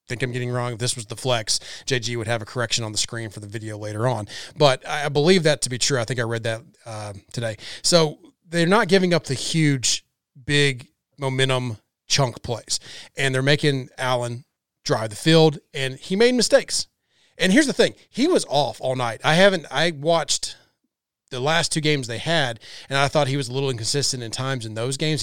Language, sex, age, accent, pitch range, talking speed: English, male, 30-49, American, 115-145 Hz, 220 wpm